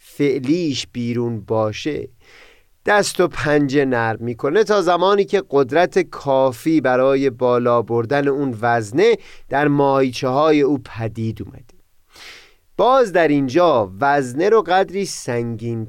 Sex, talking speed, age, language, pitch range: male, 115 wpm, 30-49, Persian, 120-180 Hz